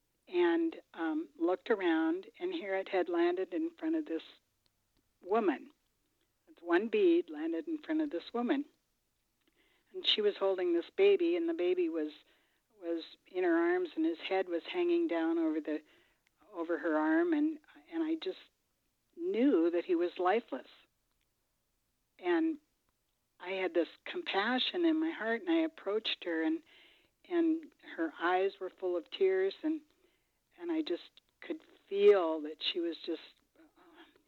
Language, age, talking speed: English, 60-79, 155 wpm